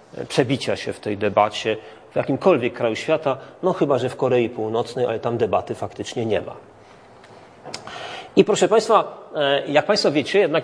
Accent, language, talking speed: native, Polish, 160 wpm